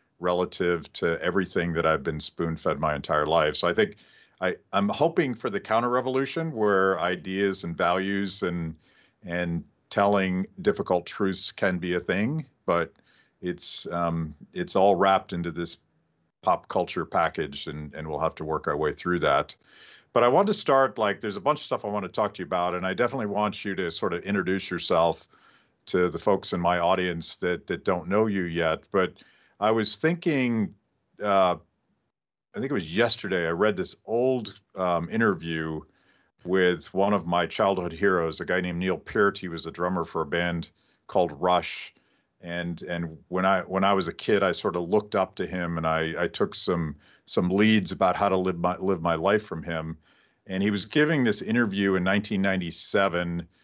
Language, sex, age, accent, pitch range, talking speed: English, male, 50-69, American, 85-100 Hz, 190 wpm